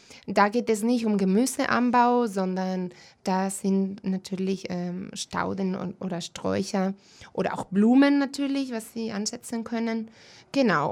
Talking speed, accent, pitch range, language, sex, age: 120 wpm, German, 190-250 Hz, German, female, 20-39